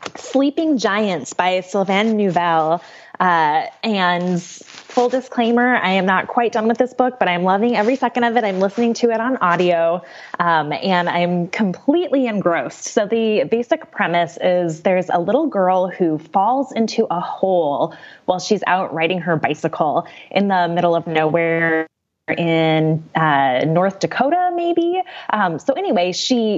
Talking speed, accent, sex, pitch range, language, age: 155 wpm, American, female, 170-240 Hz, English, 10-29